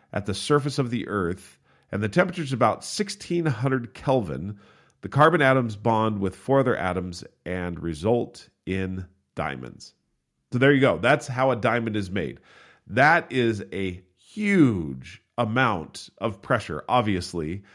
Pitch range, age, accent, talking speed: 95-130 Hz, 40-59, American, 145 wpm